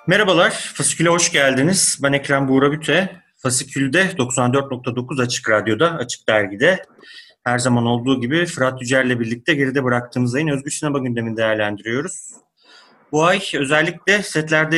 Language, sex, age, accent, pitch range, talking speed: Turkish, male, 30-49, native, 125-155 Hz, 130 wpm